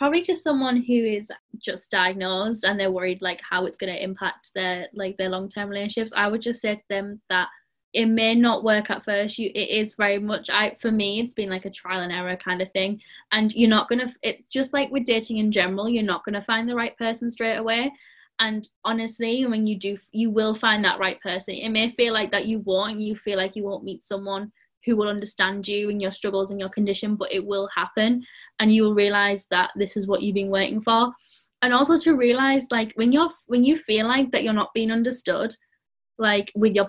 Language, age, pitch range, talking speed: English, 10-29, 200-230 Hz, 230 wpm